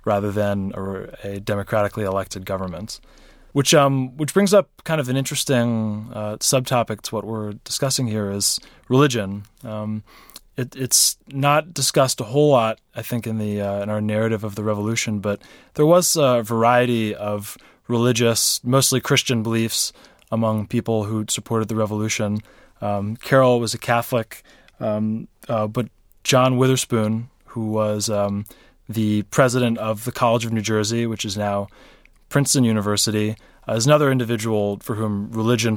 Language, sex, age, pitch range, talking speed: English, male, 20-39, 105-125 Hz, 155 wpm